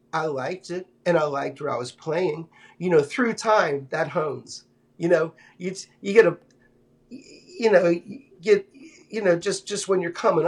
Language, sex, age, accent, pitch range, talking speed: English, male, 50-69, American, 145-200 Hz, 190 wpm